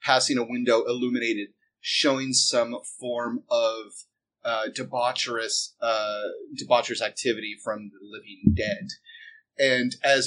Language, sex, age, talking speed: English, male, 30-49, 110 wpm